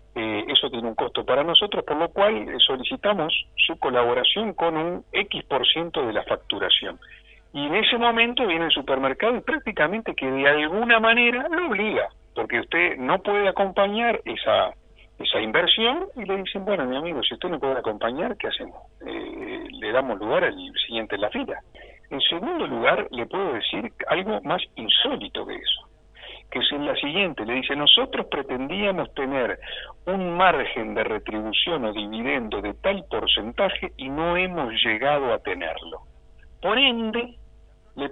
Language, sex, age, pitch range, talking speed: Spanish, male, 50-69, 150-230 Hz, 165 wpm